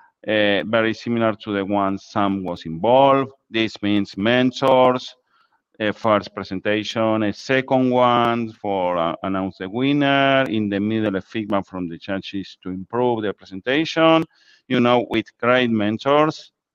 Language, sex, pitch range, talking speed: English, male, 105-125 Hz, 145 wpm